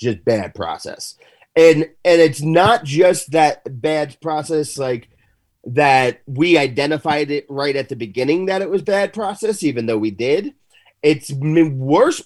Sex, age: male, 30-49